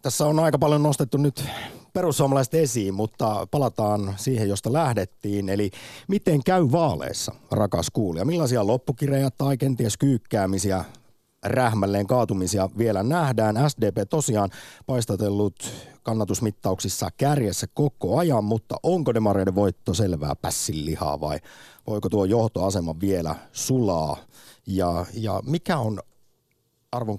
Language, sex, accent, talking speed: Finnish, male, native, 115 wpm